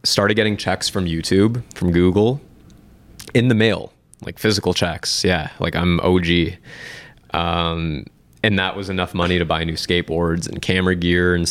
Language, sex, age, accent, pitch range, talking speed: English, male, 20-39, American, 85-100 Hz, 160 wpm